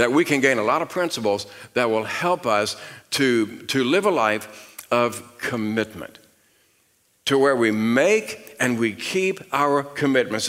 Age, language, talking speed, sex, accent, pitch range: 60-79, English, 160 wpm, male, American, 125-175 Hz